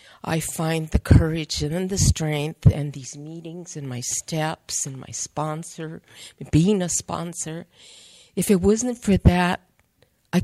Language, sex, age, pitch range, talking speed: English, female, 50-69, 140-170 Hz, 145 wpm